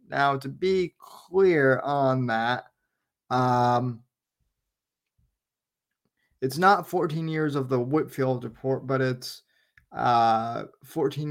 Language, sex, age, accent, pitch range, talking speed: English, male, 20-39, American, 125-140 Hz, 100 wpm